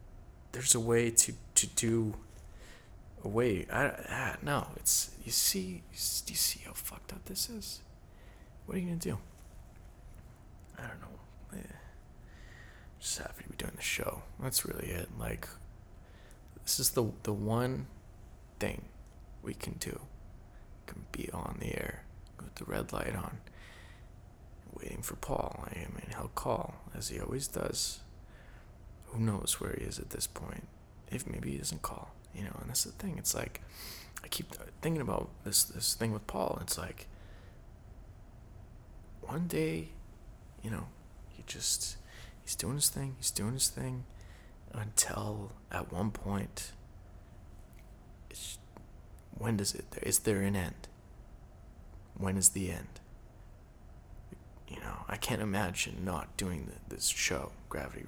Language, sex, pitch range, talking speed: English, male, 90-110 Hz, 155 wpm